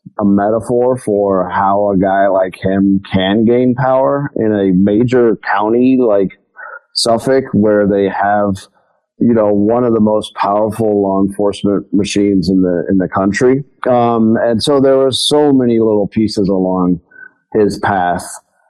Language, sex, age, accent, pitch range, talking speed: English, male, 40-59, American, 100-125 Hz, 150 wpm